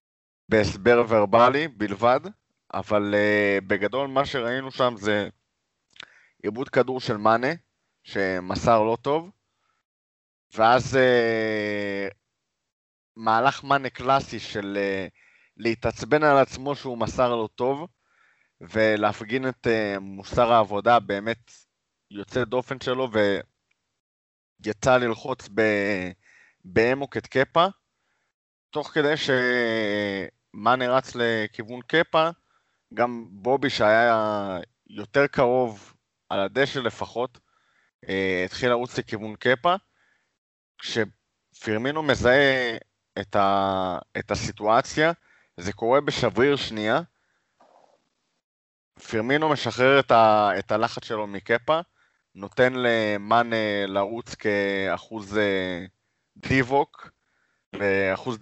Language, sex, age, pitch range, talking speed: Hebrew, male, 30-49, 100-130 Hz, 90 wpm